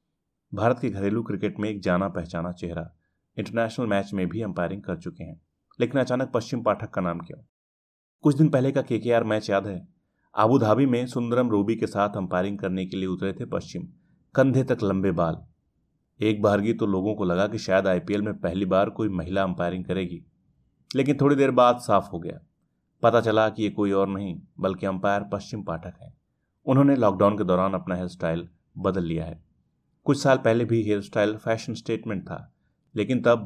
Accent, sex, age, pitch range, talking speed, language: native, male, 30-49, 95-115 Hz, 190 wpm, Hindi